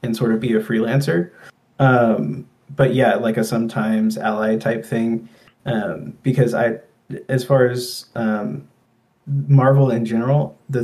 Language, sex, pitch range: English, male, 115-130 Hz